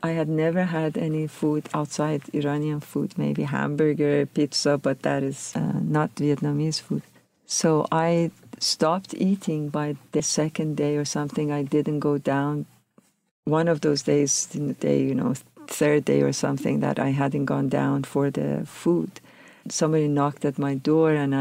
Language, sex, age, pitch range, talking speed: English, female, 50-69, 145-180 Hz, 170 wpm